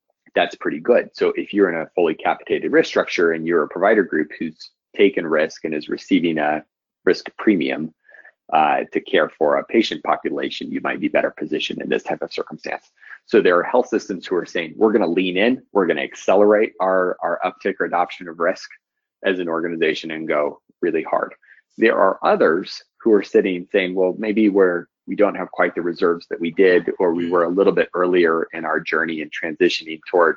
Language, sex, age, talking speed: English, male, 30-49, 205 wpm